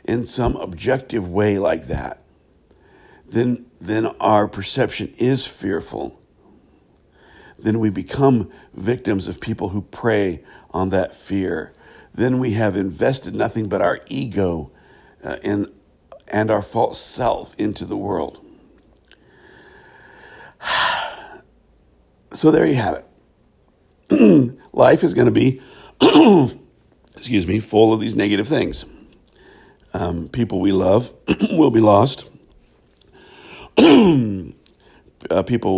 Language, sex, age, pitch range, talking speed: English, male, 60-79, 90-120 Hz, 110 wpm